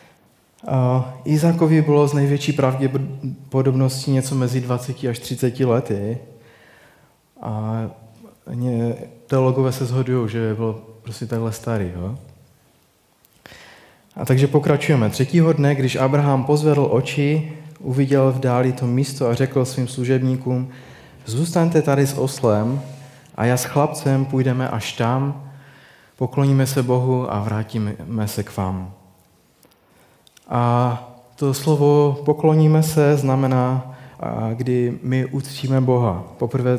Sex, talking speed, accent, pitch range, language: male, 115 wpm, native, 120-140 Hz, Czech